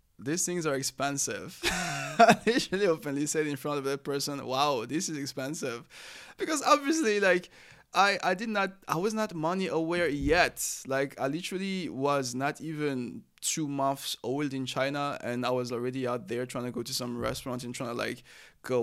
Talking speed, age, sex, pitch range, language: 185 wpm, 20-39, male, 125-160 Hz, English